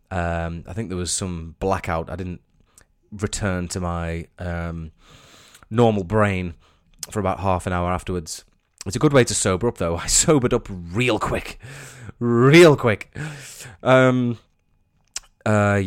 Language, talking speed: English, 145 wpm